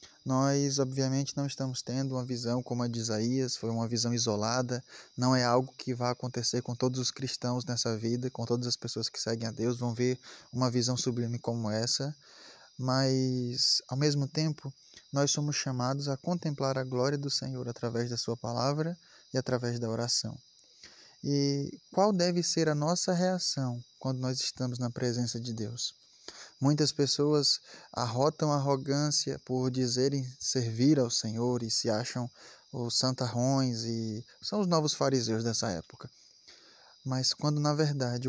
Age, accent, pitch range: 10-29, Brazilian, 120-145 Hz